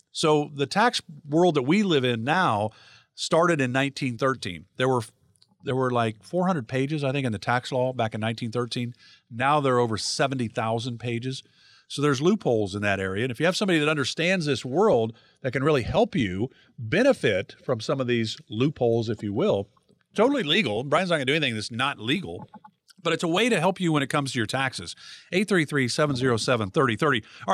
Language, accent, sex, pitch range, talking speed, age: English, American, male, 120-165 Hz, 195 wpm, 50-69